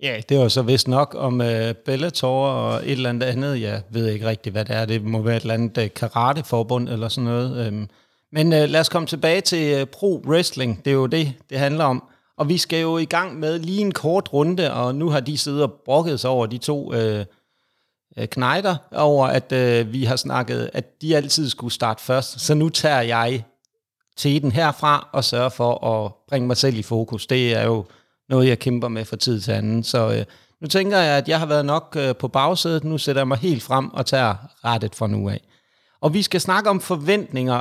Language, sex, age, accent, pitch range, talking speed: Danish, male, 30-49, native, 120-155 Hz, 220 wpm